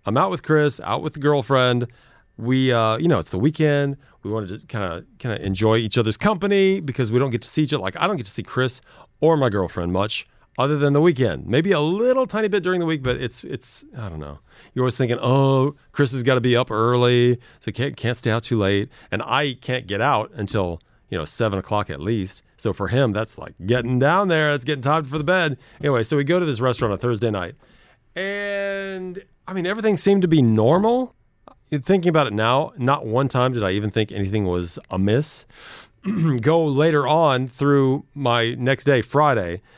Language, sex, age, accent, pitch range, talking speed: English, male, 40-59, American, 110-150 Hz, 225 wpm